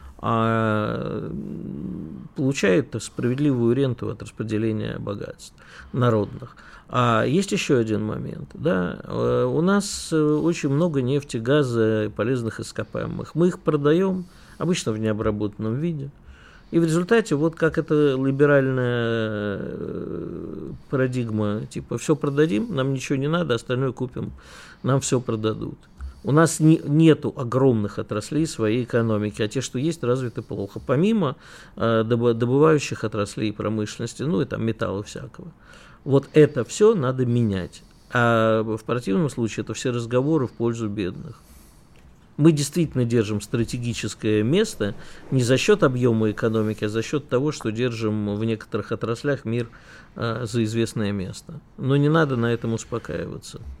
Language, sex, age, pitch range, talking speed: Russian, male, 50-69, 110-150 Hz, 130 wpm